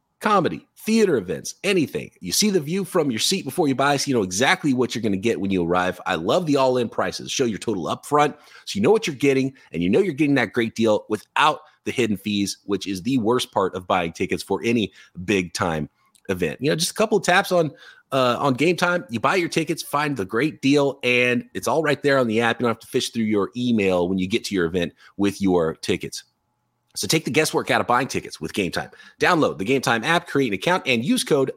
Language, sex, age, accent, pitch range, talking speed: English, male, 30-49, American, 100-145 Hz, 250 wpm